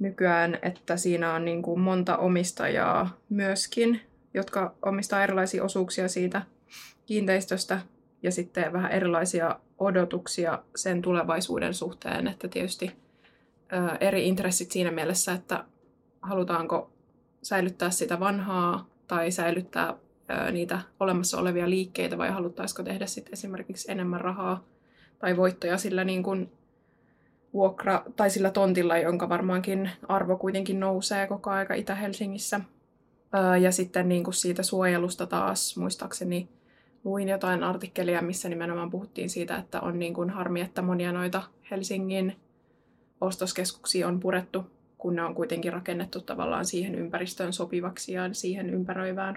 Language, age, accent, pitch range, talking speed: Finnish, 20-39, native, 175-195 Hz, 120 wpm